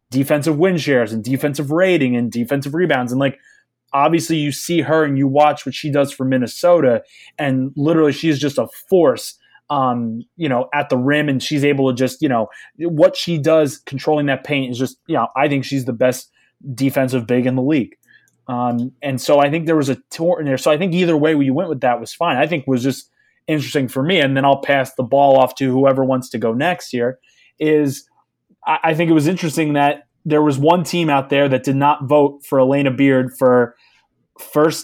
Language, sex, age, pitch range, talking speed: English, male, 20-39, 130-155 Hz, 220 wpm